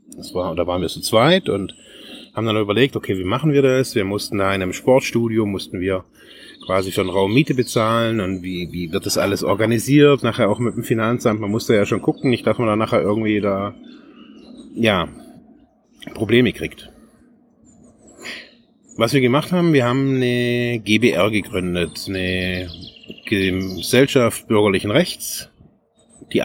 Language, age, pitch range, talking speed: German, 30-49, 100-135 Hz, 160 wpm